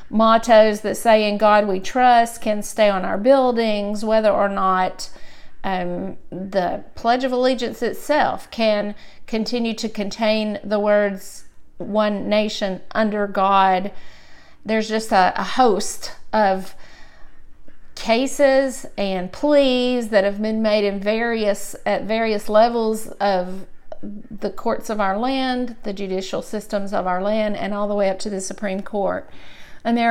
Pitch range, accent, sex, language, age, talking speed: 195-230 Hz, American, female, English, 50-69, 145 wpm